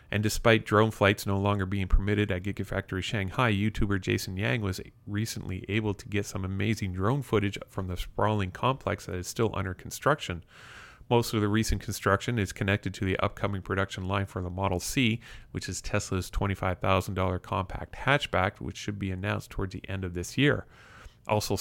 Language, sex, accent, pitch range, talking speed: English, male, American, 95-110 Hz, 180 wpm